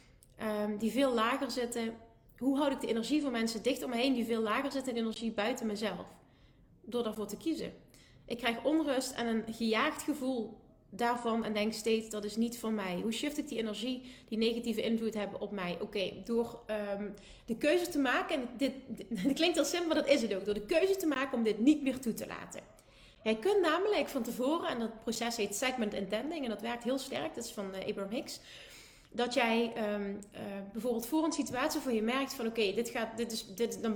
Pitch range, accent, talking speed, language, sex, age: 220-270 Hz, Dutch, 215 wpm, Dutch, female, 30-49